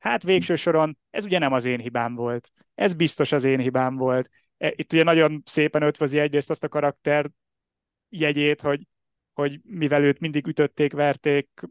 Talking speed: 165 wpm